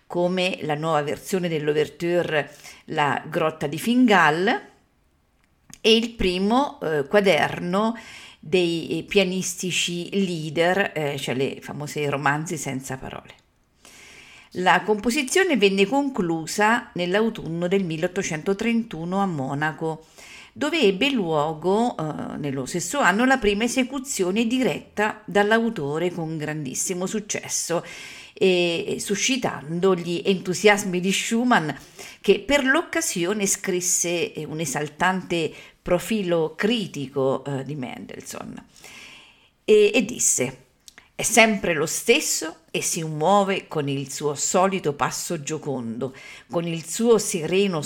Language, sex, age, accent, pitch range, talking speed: Italian, female, 50-69, native, 150-205 Hz, 105 wpm